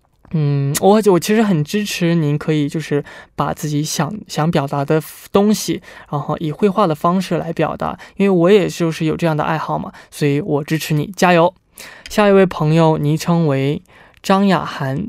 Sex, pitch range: male, 155-185 Hz